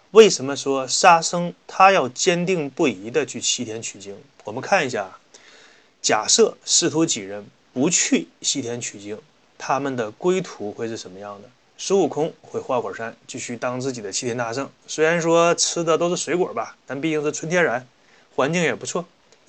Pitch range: 125-170 Hz